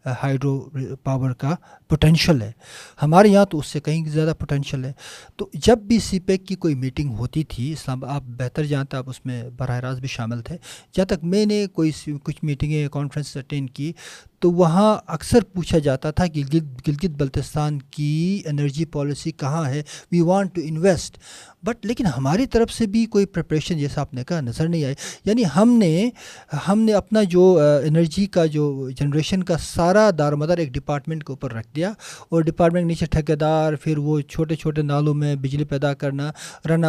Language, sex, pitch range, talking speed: Urdu, male, 145-180 Hz, 180 wpm